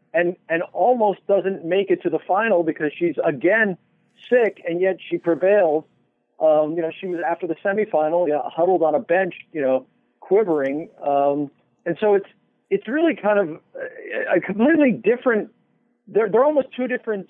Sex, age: male, 50-69